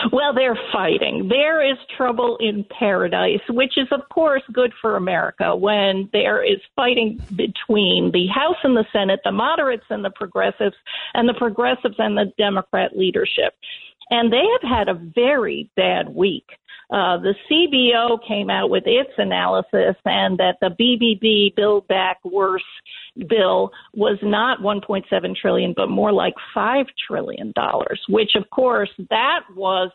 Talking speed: 150 wpm